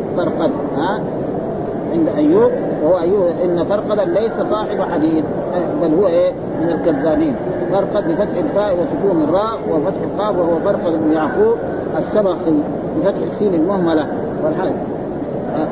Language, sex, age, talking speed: Arabic, male, 40-59, 120 wpm